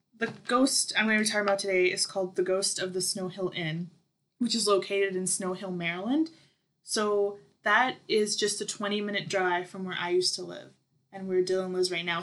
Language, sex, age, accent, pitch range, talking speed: English, female, 20-39, American, 180-210 Hz, 215 wpm